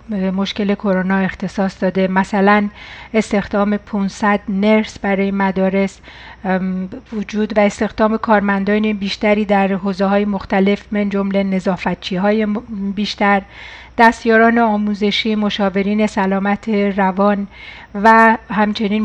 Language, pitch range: Persian, 200-225 Hz